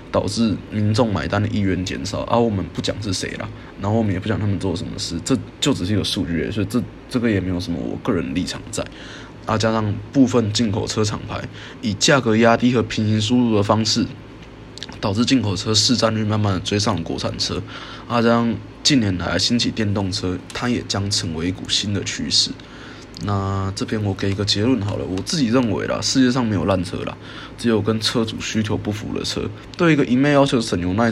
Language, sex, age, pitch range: Chinese, male, 20-39, 100-120 Hz